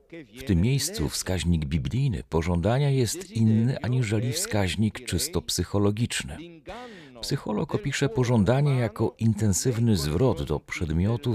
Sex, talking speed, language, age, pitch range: male, 105 wpm, Polish, 40-59, 90-125 Hz